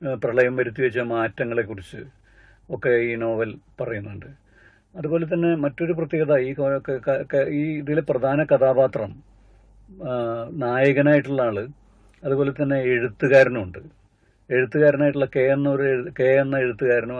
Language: Malayalam